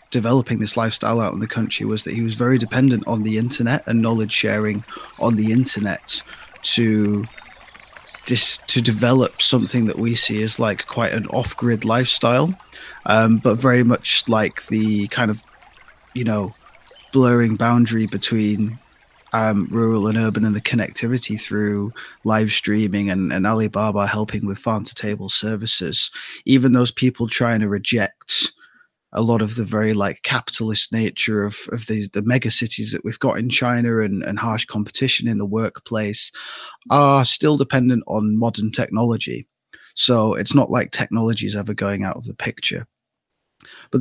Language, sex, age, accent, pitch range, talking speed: English, male, 20-39, British, 110-125 Hz, 160 wpm